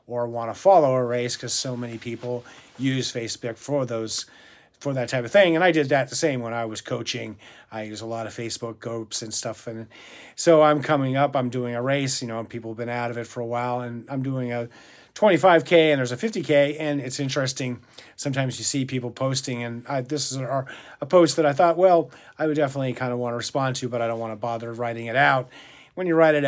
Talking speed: 240 wpm